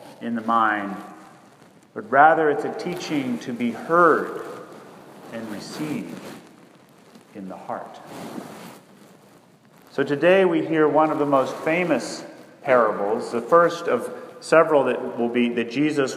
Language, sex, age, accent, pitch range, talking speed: English, male, 40-59, American, 125-170 Hz, 130 wpm